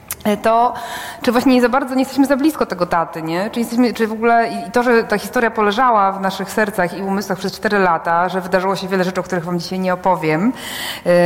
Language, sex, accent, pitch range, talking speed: Polish, female, native, 190-230 Hz, 230 wpm